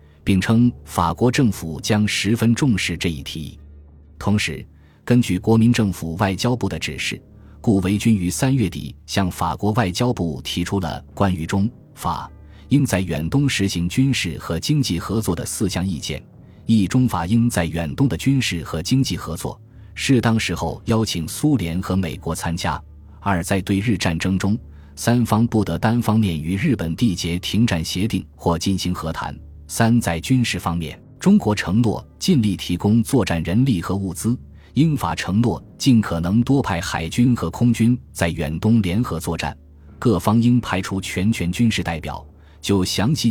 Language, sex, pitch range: Chinese, male, 85-115 Hz